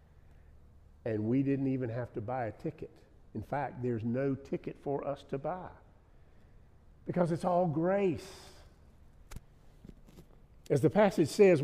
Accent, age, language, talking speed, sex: American, 50-69, English, 135 wpm, male